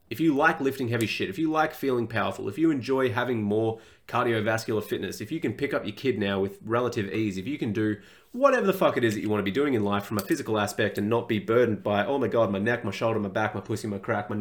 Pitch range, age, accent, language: 105-125 Hz, 30-49, Australian, English